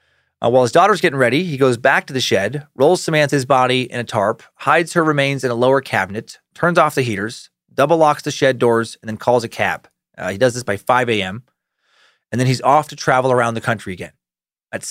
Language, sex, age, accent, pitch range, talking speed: English, male, 30-49, American, 120-145 Hz, 230 wpm